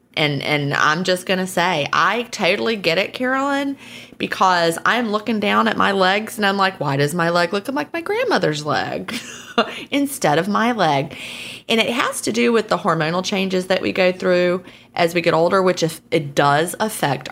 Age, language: 30-49, English